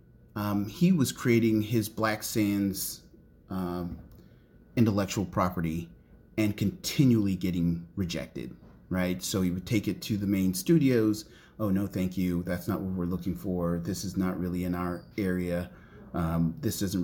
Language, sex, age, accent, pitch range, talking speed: English, male, 30-49, American, 90-115 Hz, 155 wpm